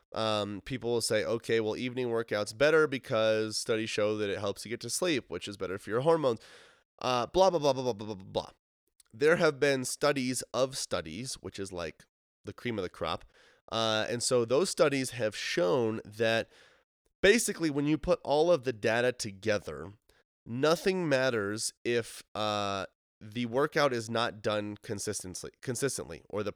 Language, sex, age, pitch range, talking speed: English, male, 20-39, 105-130 Hz, 175 wpm